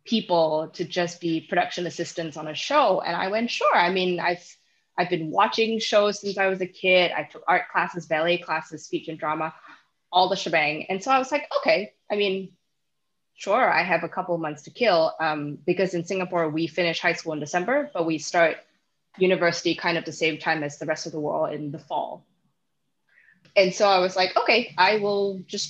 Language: English